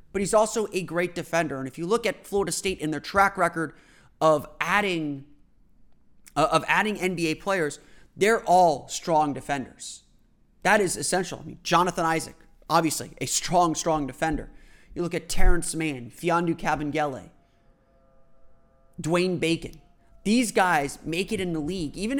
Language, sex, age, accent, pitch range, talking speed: English, male, 30-49, American, 150-190 Hz, 155 wpm